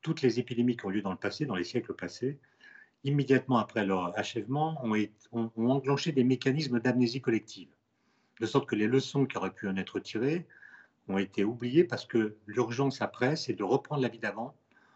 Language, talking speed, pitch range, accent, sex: French, 195 wpm, 105-135 Hz, French, male